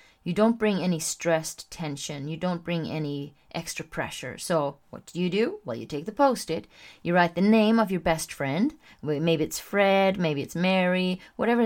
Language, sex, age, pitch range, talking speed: English, female, 30-49, 155-205 Hz, 190 wpm